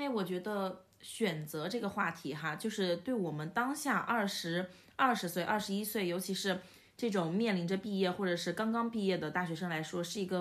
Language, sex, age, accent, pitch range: Chinese, female, 20-39, native, 170-225 Hz